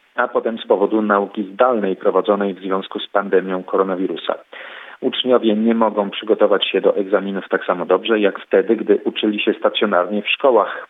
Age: 40-59